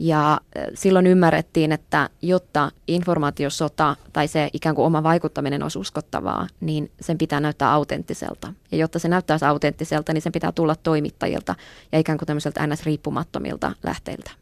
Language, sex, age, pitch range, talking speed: Finnish, female, 20-39, 150-170 Hz, 145 wpm